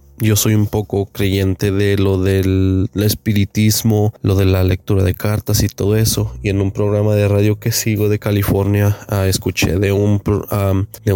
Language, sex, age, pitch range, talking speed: Spanish, male, 20-39, 100-110 Hz, 165 wpm